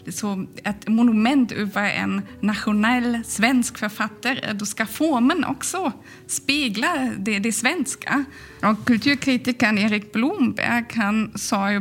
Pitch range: 205-255 Hz